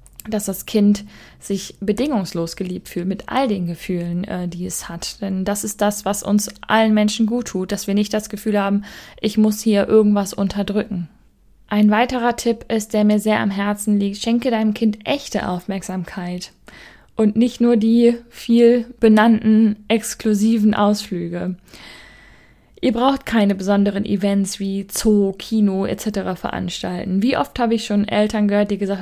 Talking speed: 160 wpm